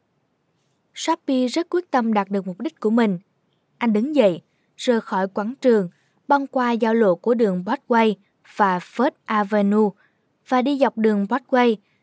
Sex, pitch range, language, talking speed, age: female, 200-255 Hz, Vietnamese, 160 wpm, 20-39